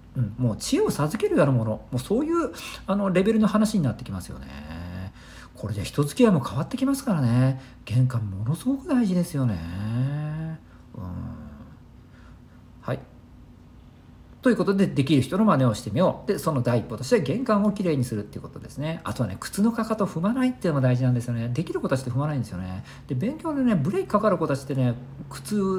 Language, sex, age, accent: Japanese, male, 50-69, native